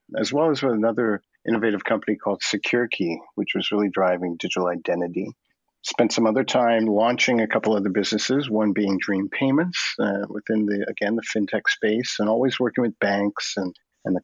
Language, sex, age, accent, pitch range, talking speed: English, male, 50-69, American, 100-125 Hz, 185 wpm